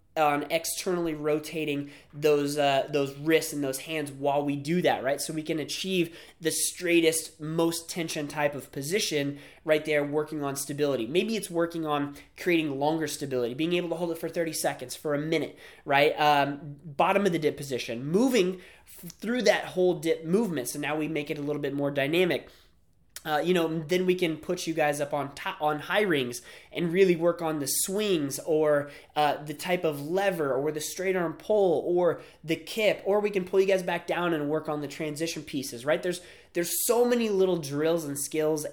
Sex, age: male, 20-39